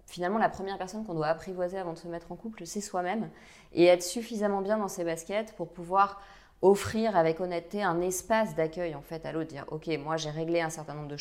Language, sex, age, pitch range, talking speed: French, female, 30-49, 155-190 Hz, 220 wpm